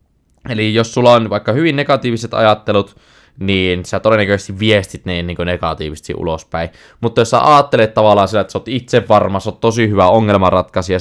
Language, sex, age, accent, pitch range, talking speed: Finnish, male, 20-39, native, 95-130 Hz, 170 wpm